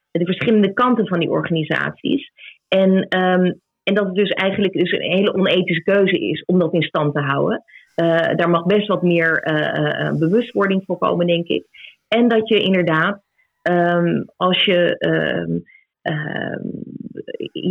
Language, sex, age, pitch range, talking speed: Dutch, female, 30-49, 175-205 Hz, 155 wpm